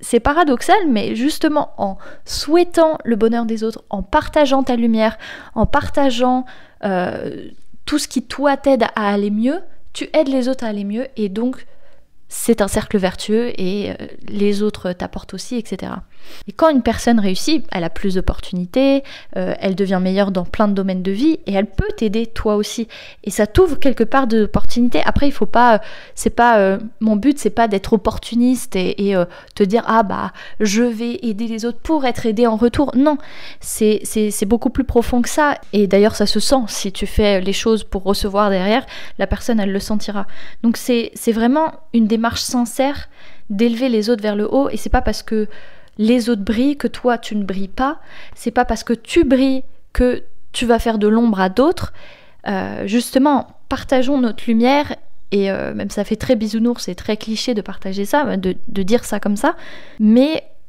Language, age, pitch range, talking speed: French, 20-39, 205-255 Hz, 195 wpm